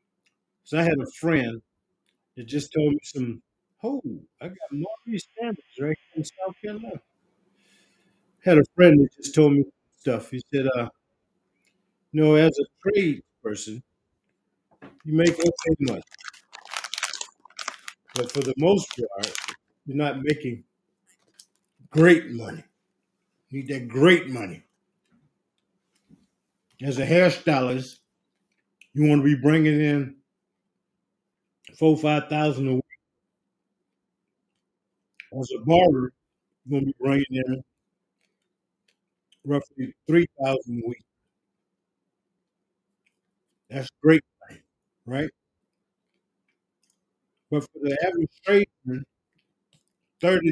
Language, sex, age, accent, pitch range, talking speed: English, male, 50-69, American, 135-165 Hz, 110 wpm